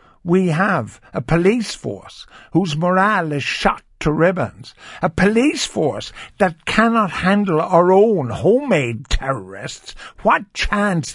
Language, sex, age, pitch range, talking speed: English, male, 60-79, 135-190 Hz, 125 wpm